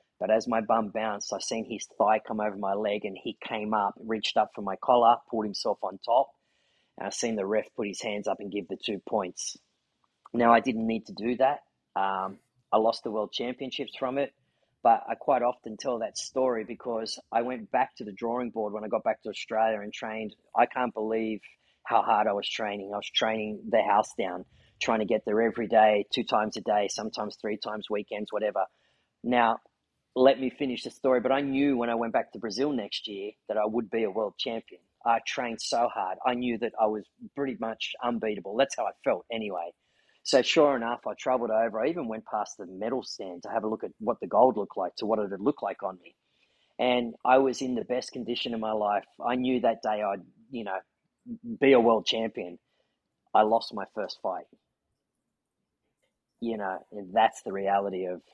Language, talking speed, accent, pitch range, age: English, 220 wpm, Australian, 105-125 Hz, 30-49